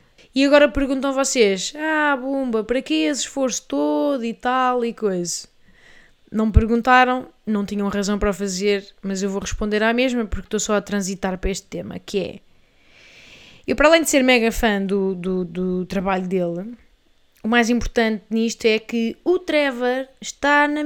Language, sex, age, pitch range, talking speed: Portuguese, female, 20-39, 210-275 Hz, 180 wpm